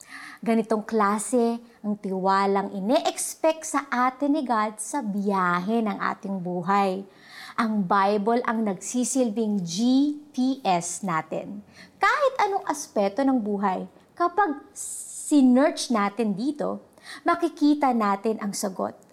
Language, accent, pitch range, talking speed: Filipino, native, 200-280 Hz, 105 wpm